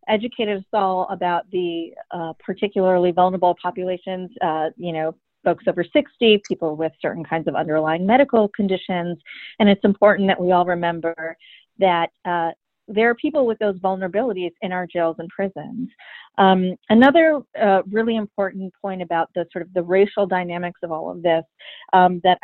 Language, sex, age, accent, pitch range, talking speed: English, female, 40-59, American, 170-205 Hz, 165 wpm